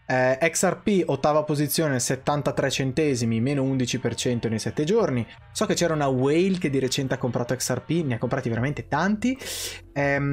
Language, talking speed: Italian, 165 wpm